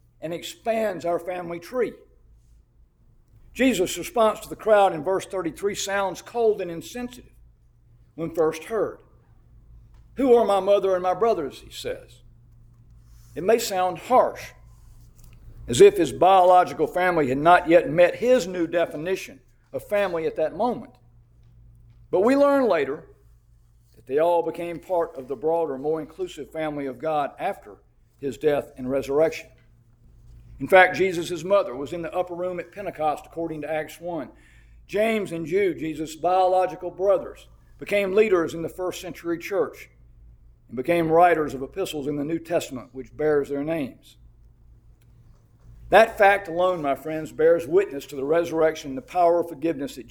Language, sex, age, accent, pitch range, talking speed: English, male, 50-69, American, 135-190 Hz, 155 wpm